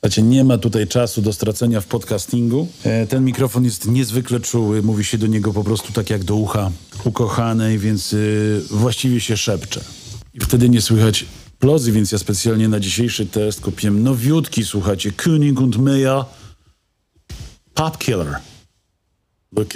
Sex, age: male, 40-59